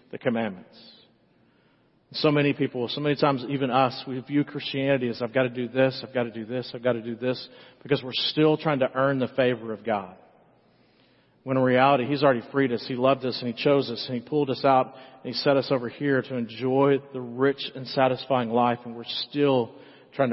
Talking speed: 220 wpm